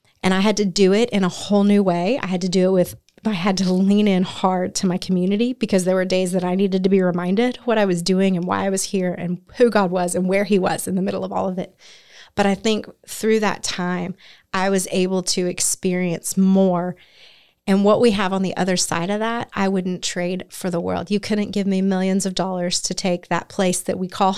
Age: 30-49